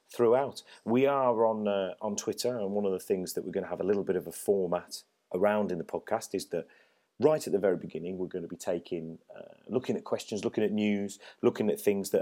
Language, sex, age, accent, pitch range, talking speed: English, male, 30-49, British, 90-105 Hz, 245 wpm